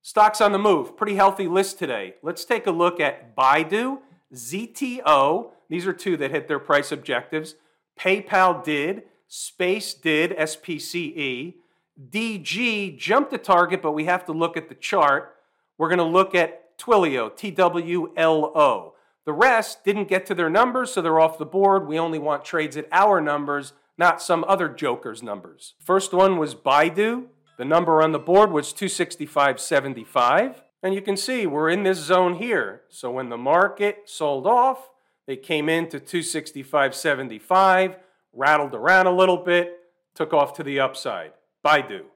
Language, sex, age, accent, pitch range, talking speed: English, male, 40-59, American, 150-190 Hz, 160 wpm